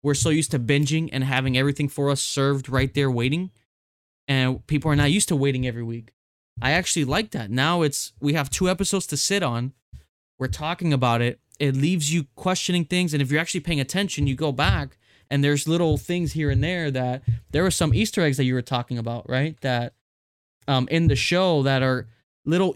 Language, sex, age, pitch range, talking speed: English, male, 20-39, 125-155 Hz, 215 wpm